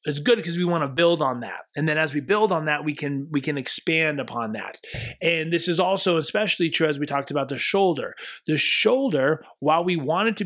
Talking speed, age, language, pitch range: 240 wpm, 30-49, English, 140-185 Hz